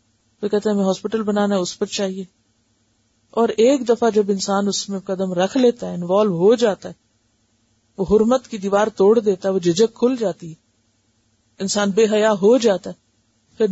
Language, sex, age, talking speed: Urdu, female, 50-69, 185 wpm